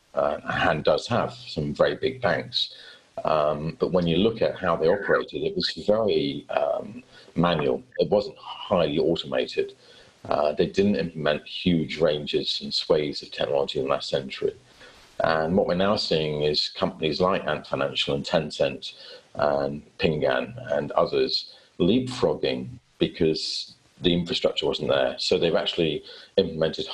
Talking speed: 145 wpm